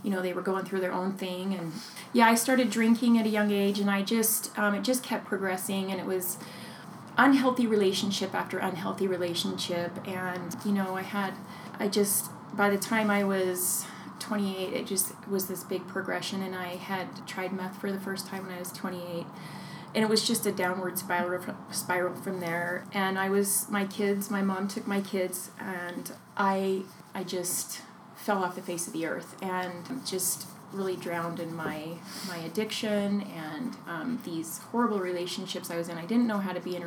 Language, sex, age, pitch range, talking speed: English, female, 30-49, 185-210 Hz, 200 wpm